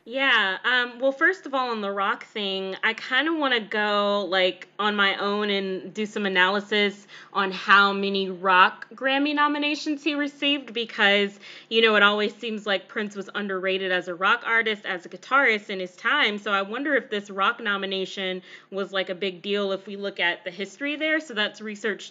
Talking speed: 200 wpm